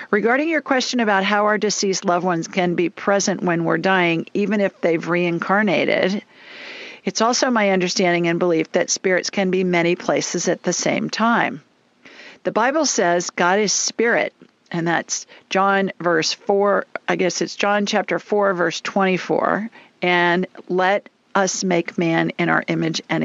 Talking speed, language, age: 165 wpm, English, 50-69